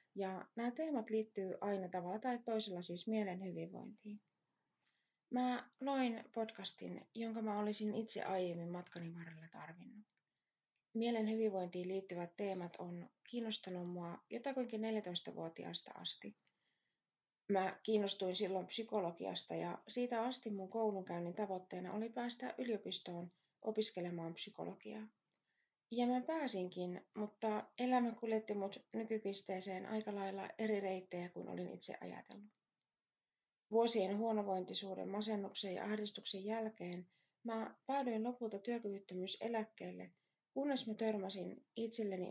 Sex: female